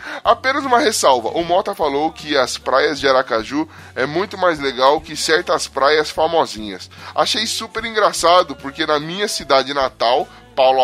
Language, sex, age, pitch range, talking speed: Portuguese, male, 10-29, 140-205 Hz, 155 wpm